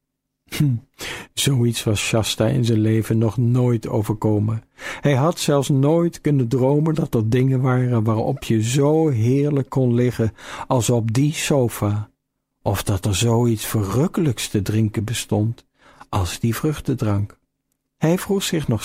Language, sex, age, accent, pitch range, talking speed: Dutch, male, 50-69, Dutch, 110-140 Hz, 145 wpm